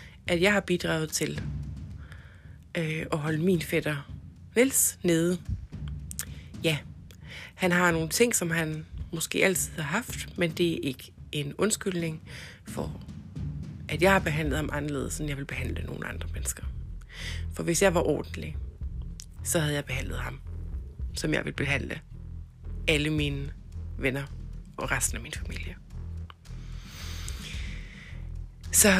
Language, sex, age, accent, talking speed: Danish, female, 30-49, native, 135 wpm